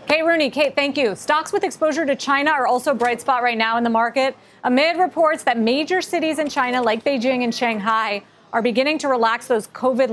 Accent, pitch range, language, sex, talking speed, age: American, 230-285 Hz, English, female, 220 wpm, 40-59